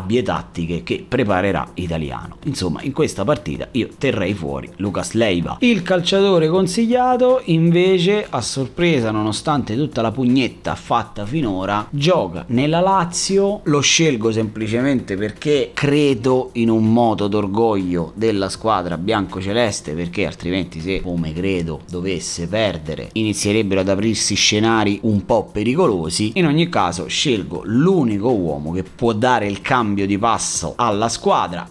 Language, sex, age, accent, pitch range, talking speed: Italian, male, 30-49, native, 100-140 Hz, 130 wpm